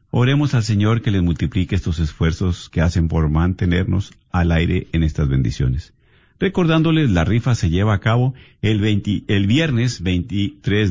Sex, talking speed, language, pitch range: male, 155 wpm, Spanish, 90-135 Hz